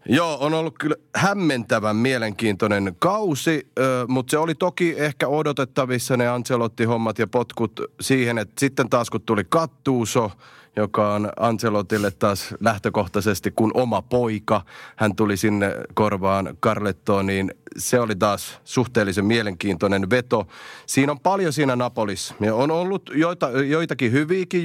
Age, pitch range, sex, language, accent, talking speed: 30-49, 105-130 Hz, male, Finnish, native, 135 wpm